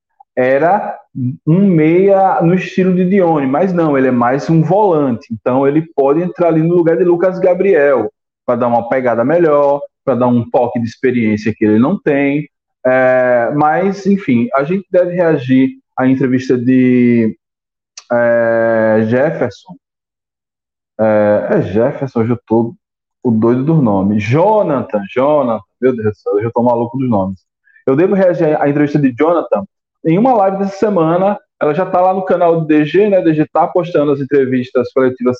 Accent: Brazilian